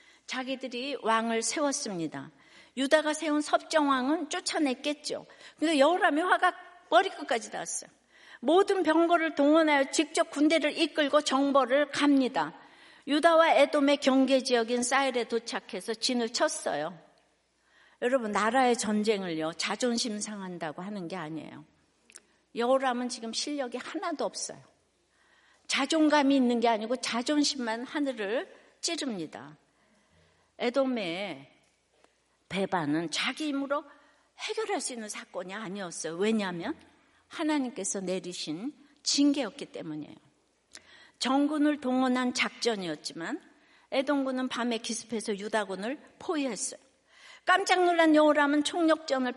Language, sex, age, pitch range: Korean, female, 60-79, 220-300 Hz